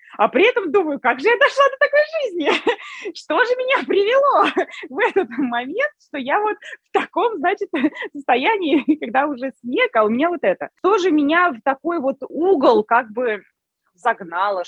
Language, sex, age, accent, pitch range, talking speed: Russian, female, 20-39, native, 225-330 Hz, 175 wpm